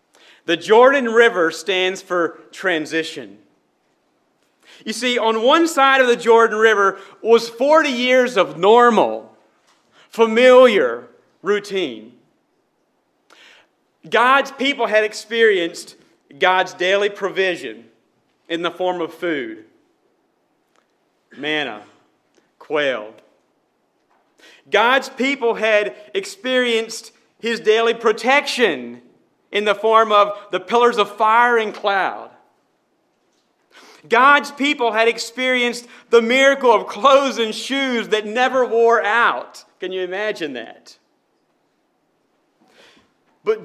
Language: English